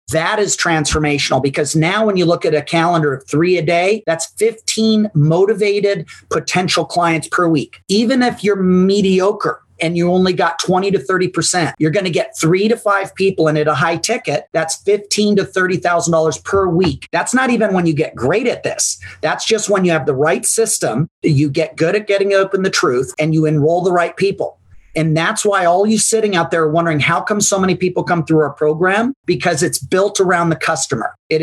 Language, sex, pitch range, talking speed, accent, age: English, male, 165-205 Hz, 205 wpm, American, 40-59